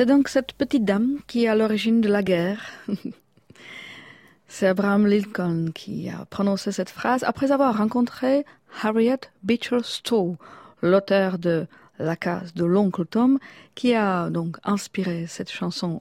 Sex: female